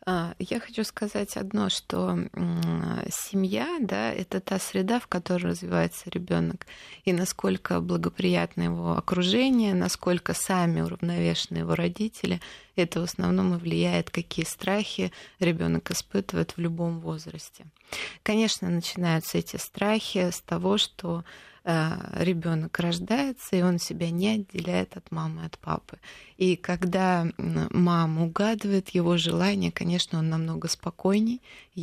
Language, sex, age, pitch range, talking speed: Russian, female, 20-39, 160-195 Hz, 125 wpm